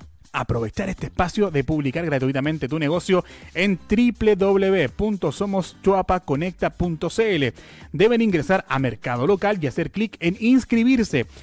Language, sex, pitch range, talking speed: Spanish, male, 140-200 Hz, 105 wpm